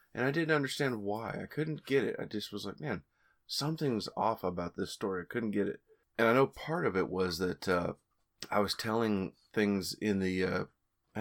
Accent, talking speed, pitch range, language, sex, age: American, 215 wpm, 100-130 Hz, English, male, 30-49